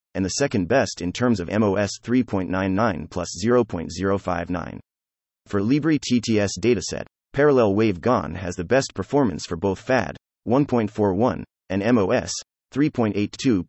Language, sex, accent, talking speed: English, male, American, 125 wpm